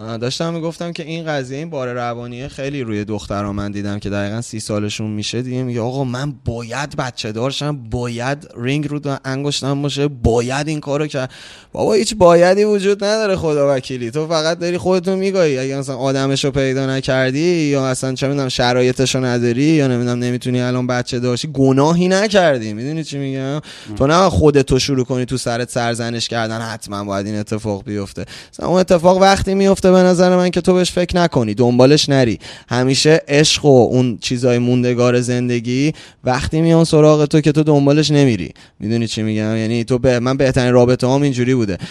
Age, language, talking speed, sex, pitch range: 20-39, Persian, 185 wpm, male, 125-145 Hz